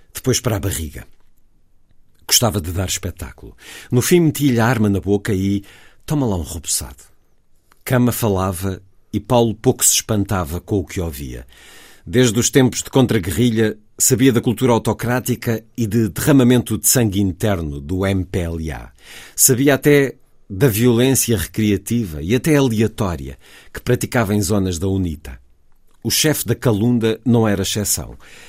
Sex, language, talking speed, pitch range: male, Portuguese, 145 wpm, 95-120 Hz